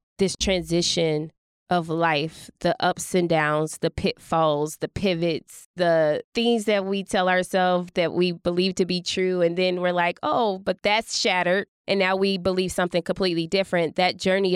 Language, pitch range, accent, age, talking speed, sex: English, 160-180 Hz, American, 20-39, 170 wpm, female